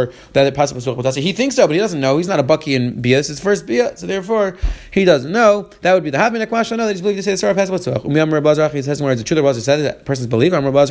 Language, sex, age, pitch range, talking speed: English, male, 30-49, 140-200 Hz, 295 wpm